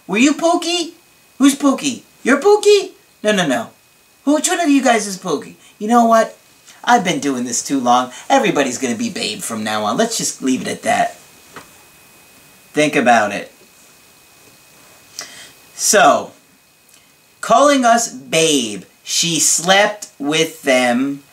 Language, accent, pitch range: English, American, 145-240 Hz